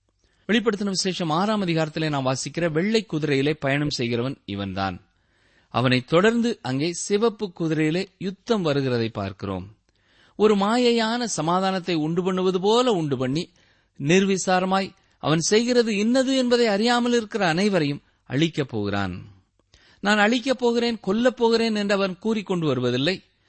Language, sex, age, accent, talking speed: Tamil, male, 30-49, native, 115 wpm